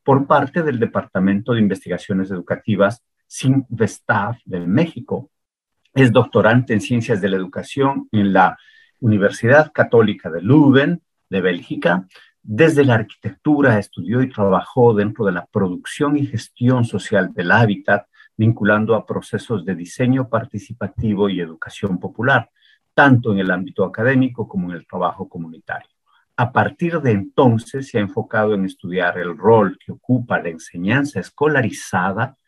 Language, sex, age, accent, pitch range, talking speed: Spanish, male, 50-69, Mexican, 100-130 Hz, 140 wpm